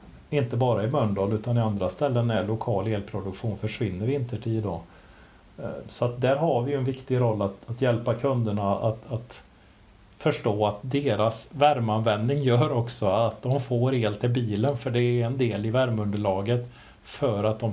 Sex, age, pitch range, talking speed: male, 40-59, 110-135 Hz, 170 wpm